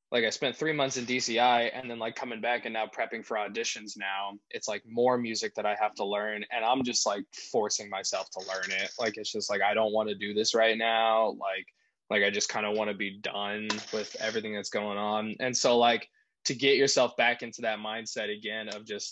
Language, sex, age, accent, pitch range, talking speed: English, male, 20-39, American, 105-125 Hz, 240 wpm